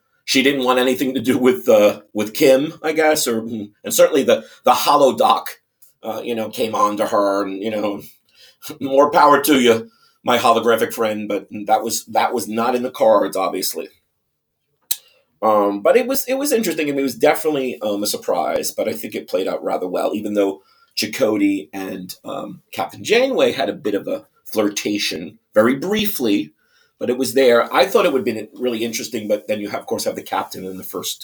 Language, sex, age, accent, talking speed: English, male, 40-59, American, 205 wpm